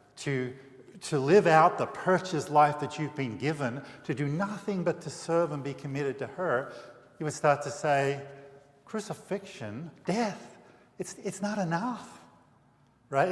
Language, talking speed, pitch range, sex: English, 155 wpm, 130-170 Hz, male